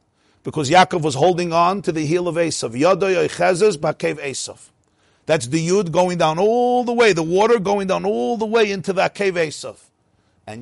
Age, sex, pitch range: 50-69, male, 110-180 Hz